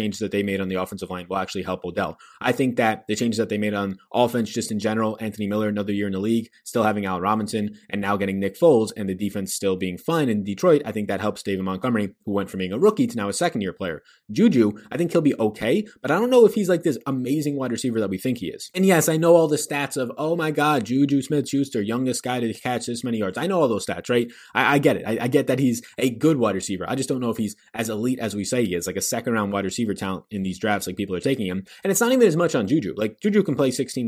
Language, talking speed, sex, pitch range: English, 295 wpm, male, 105-145 Hz